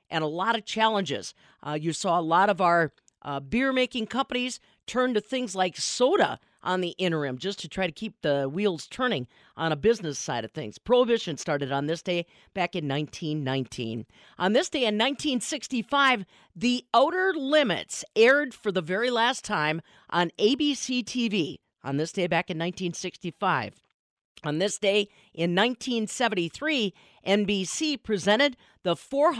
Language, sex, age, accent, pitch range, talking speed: English, female, 40-59, American, 170-245 Hz, 150 wpm